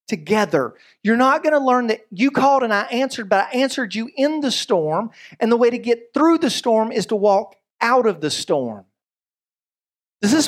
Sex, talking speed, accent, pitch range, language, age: male, 205 wpm, American, 205-270 Hz, English, 40-59